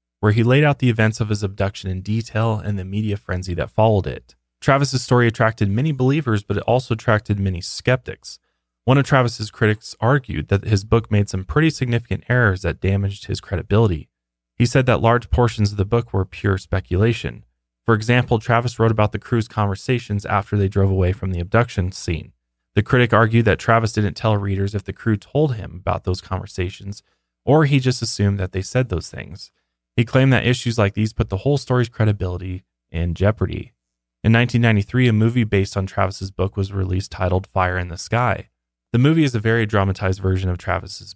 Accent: American